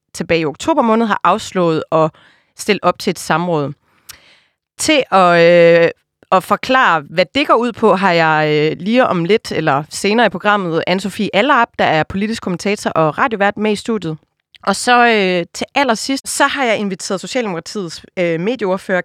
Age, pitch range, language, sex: 30-49, 170-230 Hz, Danish, female